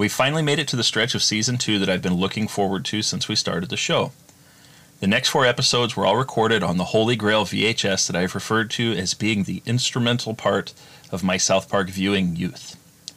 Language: English